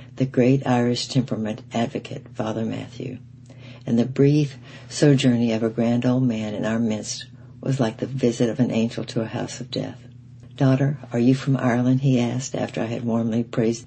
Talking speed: 185 wpm